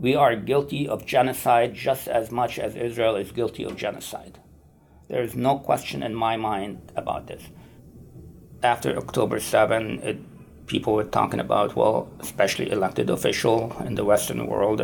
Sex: male